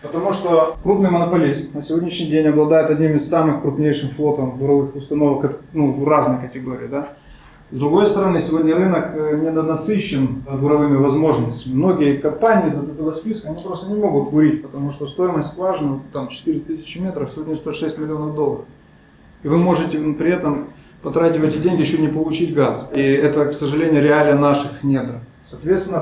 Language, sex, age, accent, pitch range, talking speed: Ukrainian, male, 20-39, native, 140-165 Hz, 165 wpm